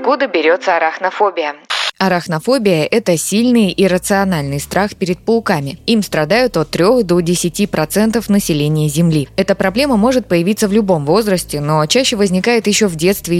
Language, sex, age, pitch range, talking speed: Russian, female, 20-39, 160-210 Hz, 145 wpm